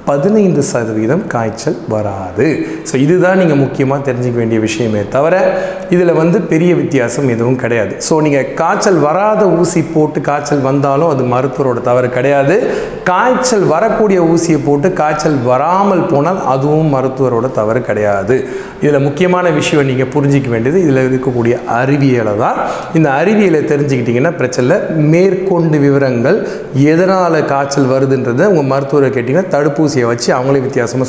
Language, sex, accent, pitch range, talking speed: Tamil, male, native, 130-175 Hz, 110 wpm